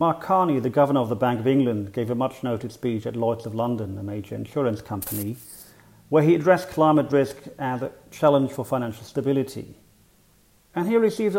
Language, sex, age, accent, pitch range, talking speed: English, male, 40-59, British, 115-145 Hz, 190 wpm